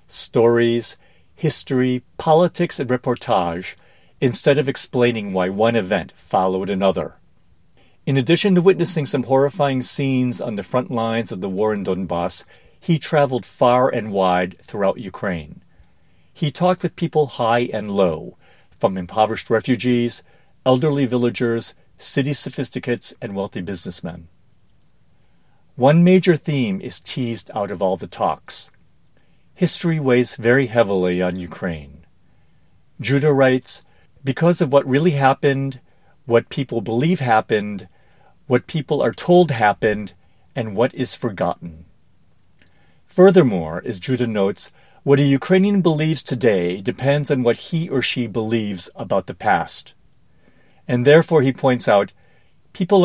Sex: male